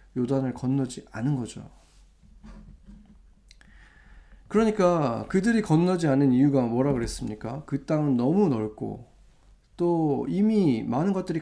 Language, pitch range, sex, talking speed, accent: English, 130-185 Hz, male, 100 wpm, Korean